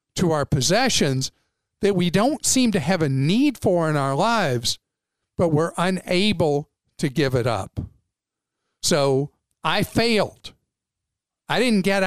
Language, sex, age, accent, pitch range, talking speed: English, male, 50-69, American, 135-185 Hz, 135 wpm